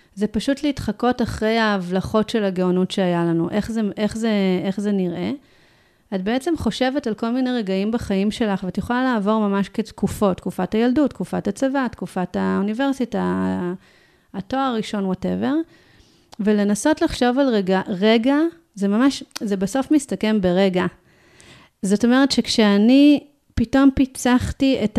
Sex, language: female, Hebrew